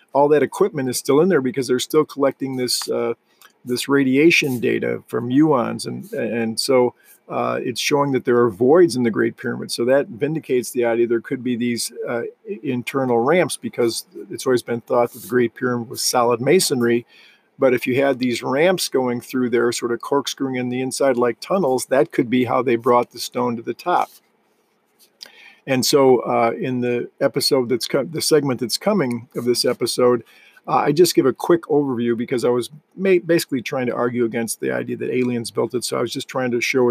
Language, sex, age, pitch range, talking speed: English, male, 50-69, 120-140 Hz, 210 wpm